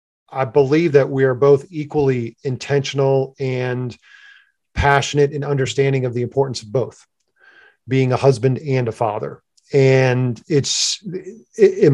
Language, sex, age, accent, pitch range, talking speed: English, male, 40-59, American, 130-150 Hz, 130 wpm